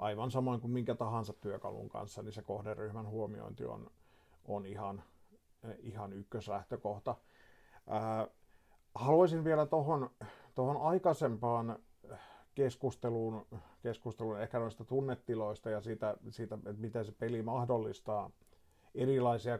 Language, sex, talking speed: Finnish, male, 105 wpm